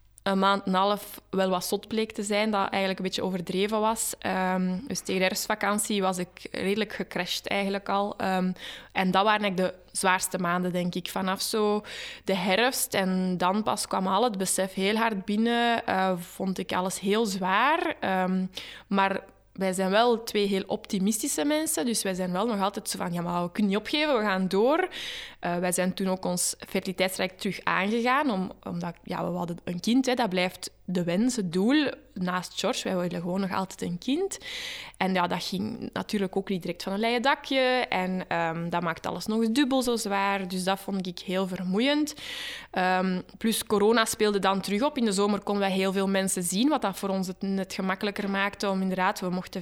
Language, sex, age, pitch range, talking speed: Dutch, female, 20-39, 185-225 Hz, 205 wpm